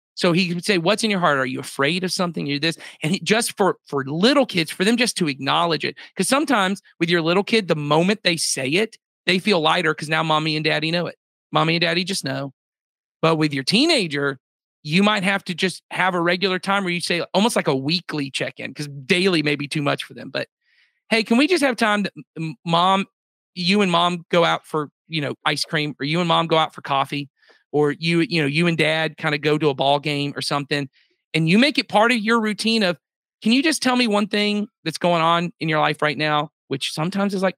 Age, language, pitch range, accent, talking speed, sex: 40-59, English, 155-195 Hz, American, 245 wpm, male